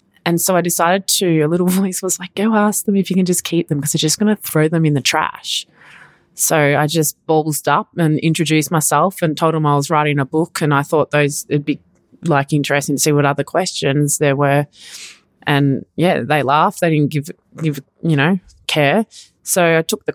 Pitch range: 145-170 Hz